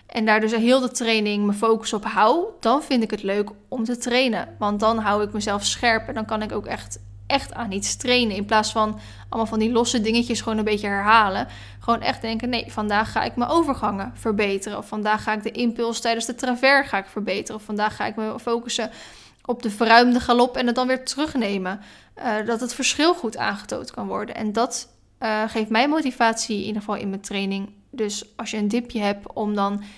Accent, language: Dutch, Dutch